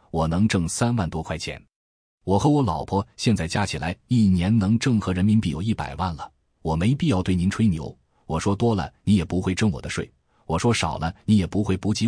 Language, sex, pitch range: Chinese, male, 80-105 Hz